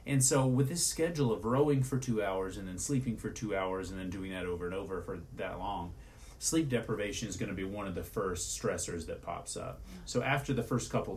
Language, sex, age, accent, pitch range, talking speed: English, male, 30-49, American, 90-120 Hz, 235 wpm